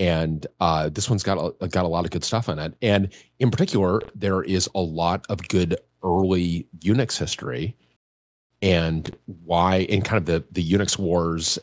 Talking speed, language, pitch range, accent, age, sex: 180 wpm, English, 80-100 Hz, American, 30-49, male